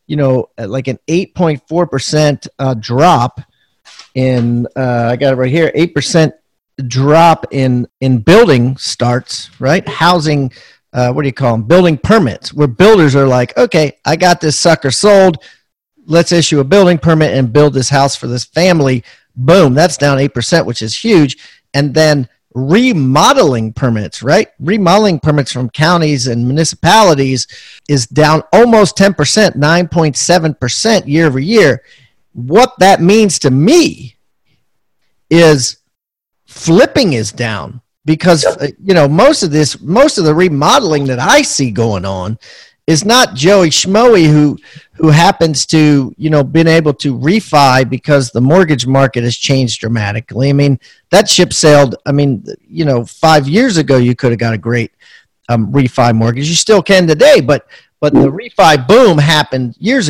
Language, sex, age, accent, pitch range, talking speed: English, male, 40-59, American, 125-170 Hz, 155 wpm